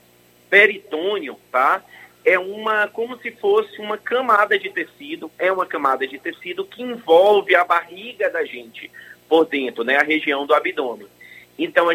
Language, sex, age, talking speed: Portuguese, male, 30-49, 155 wpm